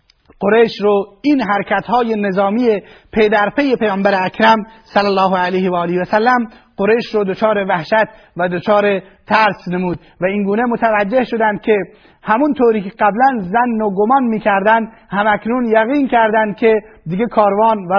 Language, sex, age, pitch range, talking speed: Persian, male, 30-49, 200-230 Hz, 145 wpm